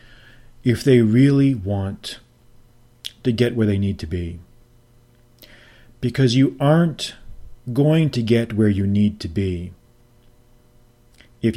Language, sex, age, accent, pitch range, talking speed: English, male, 40-59, American, 105-125 Hz, 120 wpm